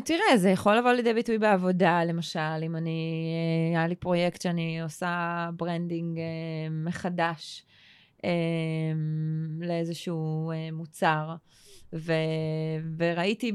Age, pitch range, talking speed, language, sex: 20-39, 165-200 Hz, 95 wpm, Hebrew, female